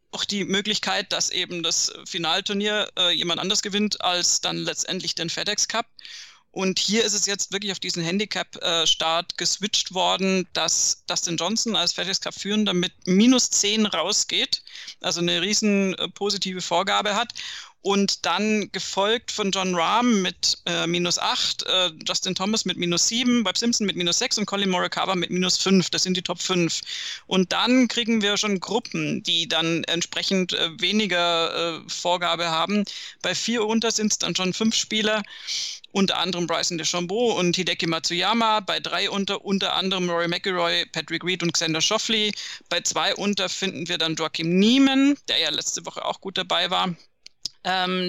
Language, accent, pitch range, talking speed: German, German, 170-205 Hz, 170 wpm